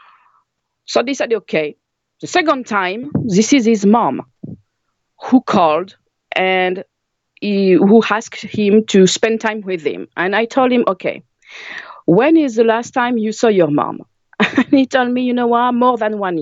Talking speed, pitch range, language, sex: 170 wpm, 185-250 Hz, English, female